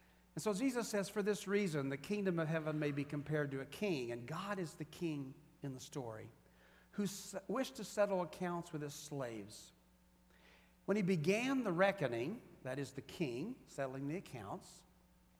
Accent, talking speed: American, 180 wpm